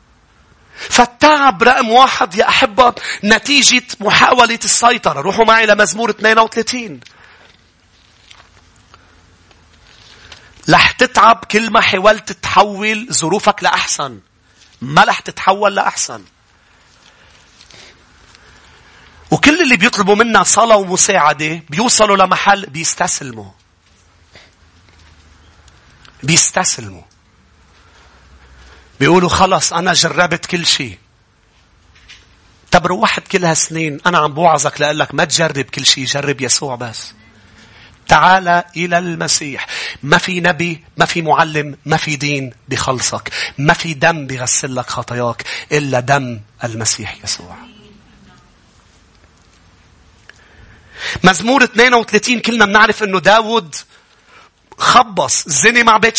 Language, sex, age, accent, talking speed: English, male, 40-59, Lebanese, 95 wpm